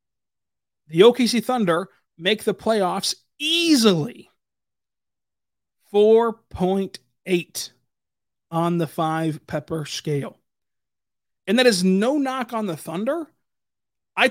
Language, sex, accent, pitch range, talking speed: English, male, American, 155-210 Hz, 90 wpm